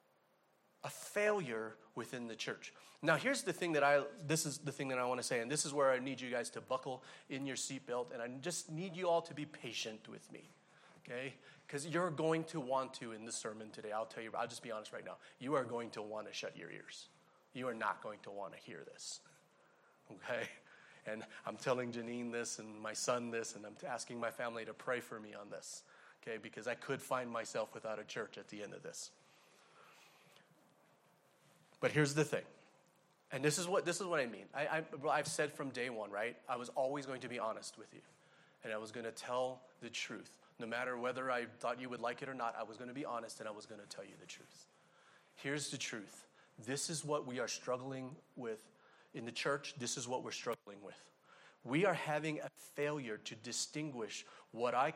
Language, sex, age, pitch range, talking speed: English, male, 30-49, 120-150 Hz, 225 wpm